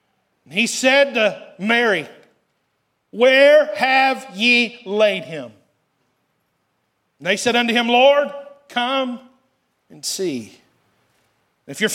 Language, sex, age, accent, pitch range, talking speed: English, male, 40-59, American, 220-275 Hz, 100 wpm